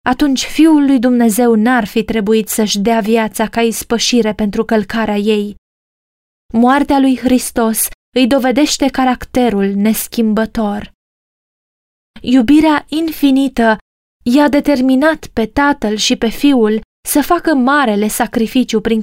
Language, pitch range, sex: Romanian, 220-265 Hz, female